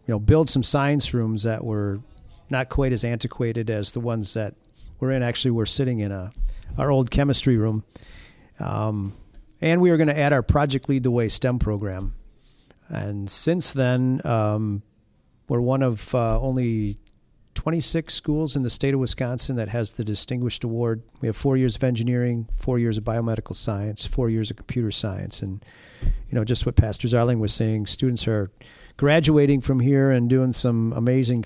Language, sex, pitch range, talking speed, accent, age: English, male, 110-135 Hz, 185 wpm, American, 40-59